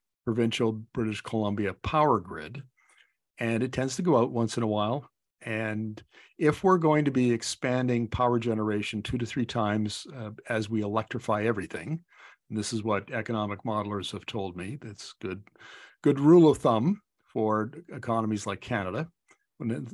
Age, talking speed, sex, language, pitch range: 50-69, 160 wpm, male, English, 110-130 Hz